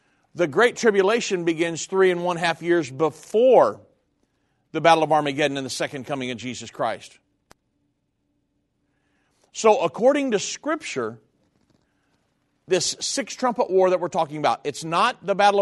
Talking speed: 135 wpm